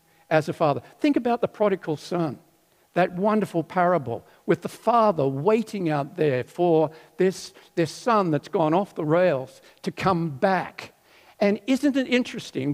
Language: English